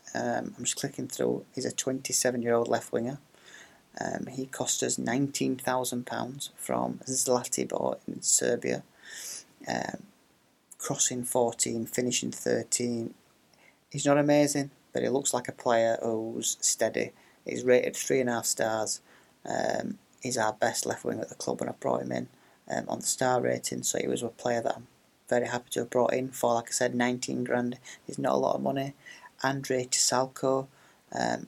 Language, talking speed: English, 165 wpm